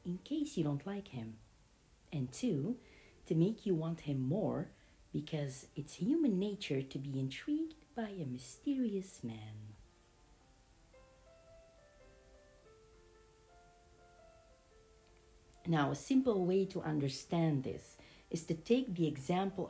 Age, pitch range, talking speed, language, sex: 50-69, 125-200 Hz, 115 wpm, English, female